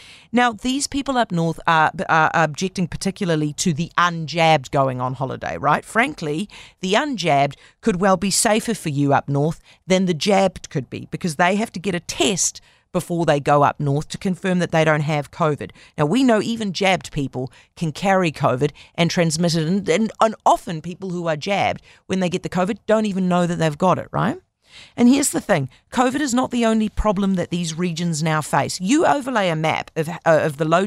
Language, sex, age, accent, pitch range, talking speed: English, female, 40-59, Australian, 155-200 Hz, 210 wpm